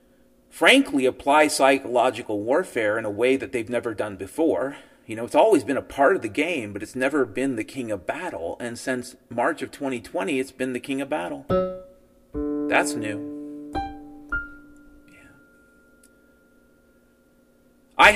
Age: 40-59